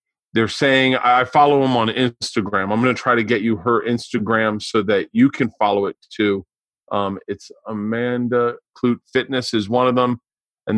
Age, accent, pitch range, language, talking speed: 40-59, American, 110-130 Hz, English, 185 wpm